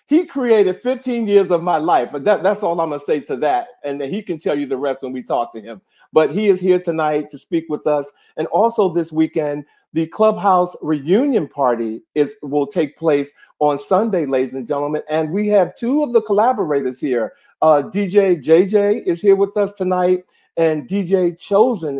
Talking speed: 200 wpm